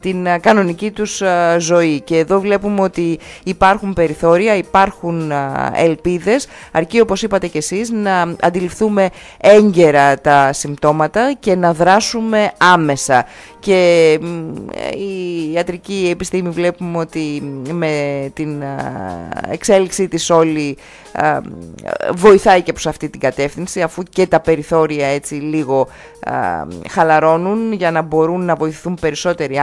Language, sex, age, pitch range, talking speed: Greek, female, 30-49, 155-200 Hz, 115 wpm